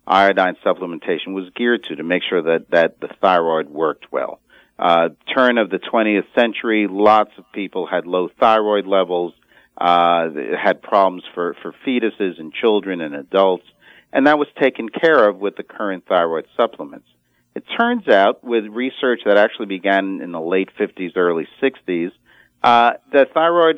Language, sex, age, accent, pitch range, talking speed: English, male, 40-59, American, 95-115 Hz, 165 wpm